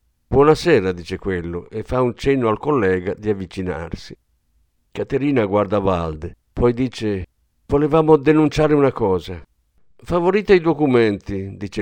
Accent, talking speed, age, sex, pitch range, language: native, 120 wpm, 50-69, male, 90-140 Hz, Italian